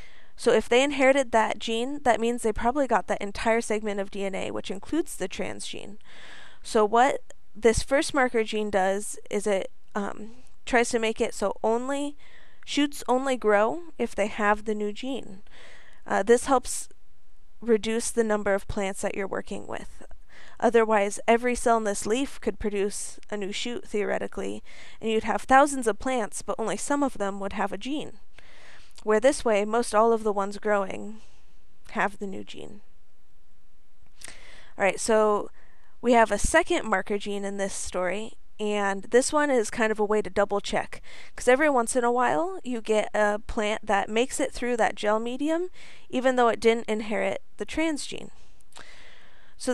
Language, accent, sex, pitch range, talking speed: English, American, female, 205-245 Hz, 175 wpm